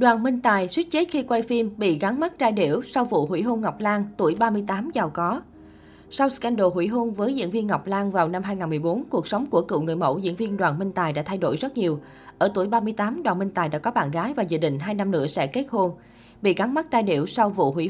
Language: Vietnamese